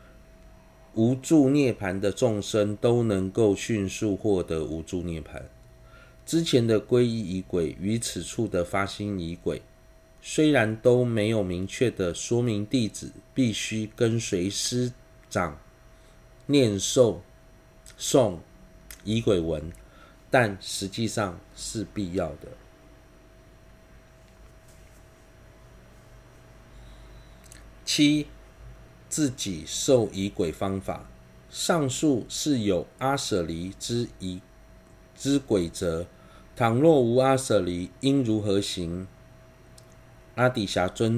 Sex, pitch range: male, 95-130 Hz